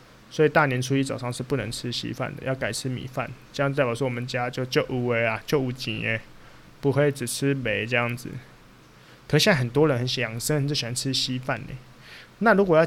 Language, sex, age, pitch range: Chinese, male, 20-39, 125-150 Hz